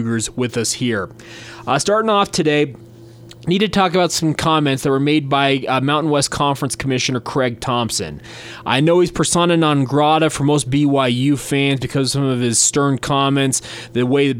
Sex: male